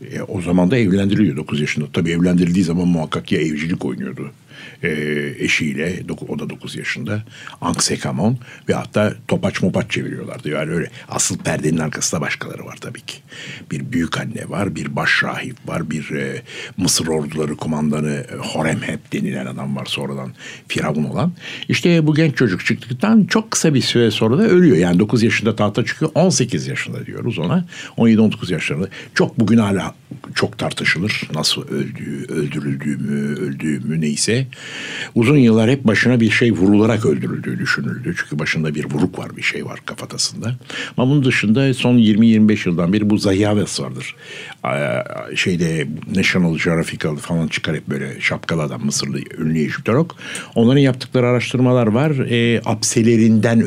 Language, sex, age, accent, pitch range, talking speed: Turkish, male, 60-79, native, 80-125 Hz, 155 wpm